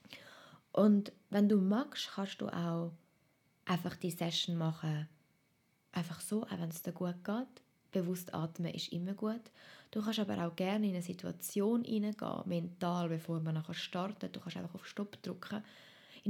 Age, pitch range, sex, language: 20-39, 170-205 Hz, female, German